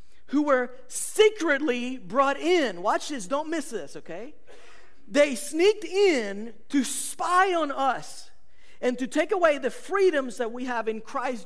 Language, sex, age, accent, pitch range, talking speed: English, male, 50-69, American, 190-270 Hz, 150 wpm